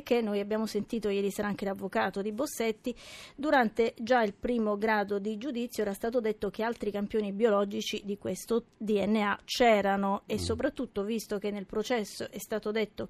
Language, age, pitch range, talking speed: Italian, 30-49, 200-230 Hz, 170 wpm